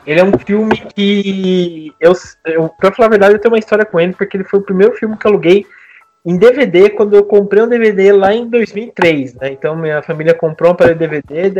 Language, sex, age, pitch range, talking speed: Portuguese, male, 20-39, 160-215 Hz, 235 wpm